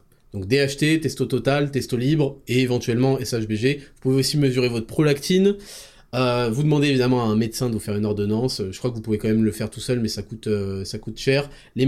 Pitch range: 120-150 Hz